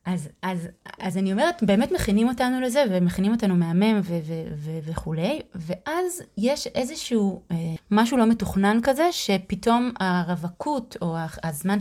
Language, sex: Hebrew, female